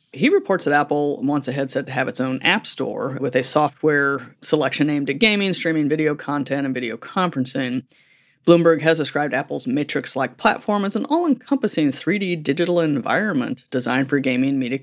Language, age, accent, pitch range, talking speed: English, 30-49, American, 130-160 Hz, 170 wpm